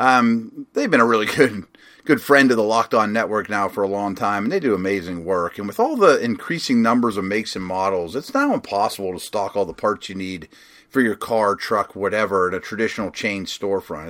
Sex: male